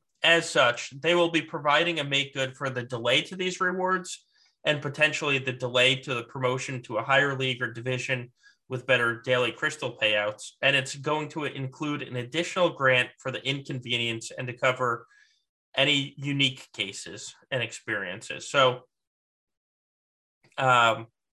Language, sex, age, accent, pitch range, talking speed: English, male, 20-39, American, 125-150 Hz, 150 wpm